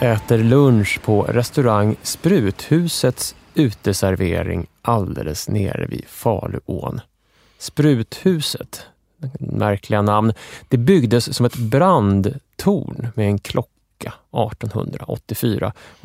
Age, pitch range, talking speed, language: 30-49, 105-145 Hz, 80 wpm, English